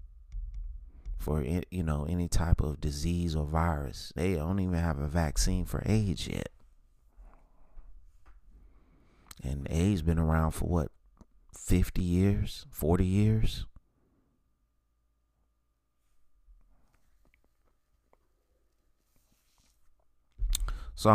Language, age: English, 30-49